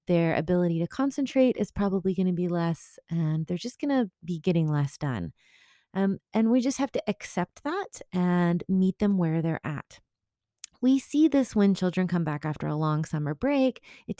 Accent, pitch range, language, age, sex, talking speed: American, 160-210 Hz, English, 30-49, female, 185 wpm